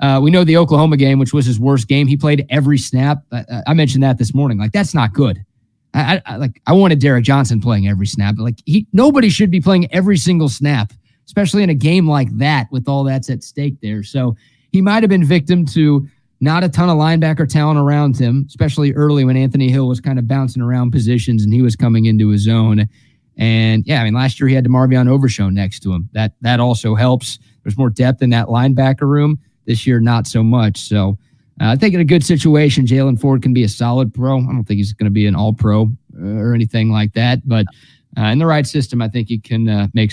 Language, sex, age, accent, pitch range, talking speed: English, male, 30-49, American, 115-145 Hz, 240 wpm